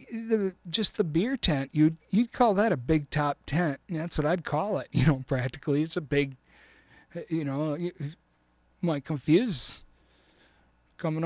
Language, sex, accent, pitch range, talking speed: English, male, American, 110-155 Hz, 160 wpm